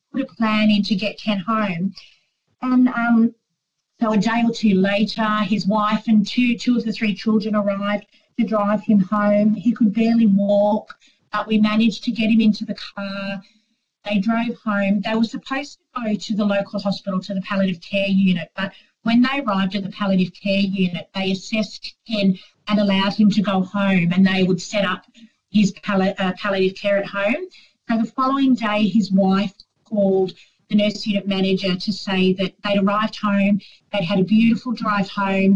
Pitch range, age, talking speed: 195-220 Hz, 40-59, 185 wpm